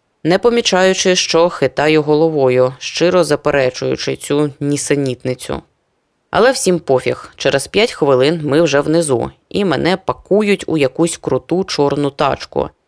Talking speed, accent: 120 wpm, native